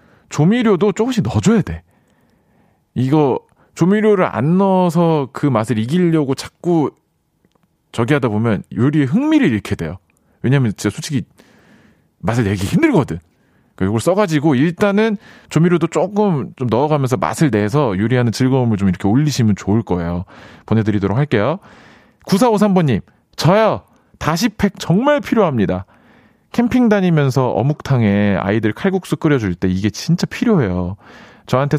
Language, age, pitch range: Korean, 40-59, 105-165 Hz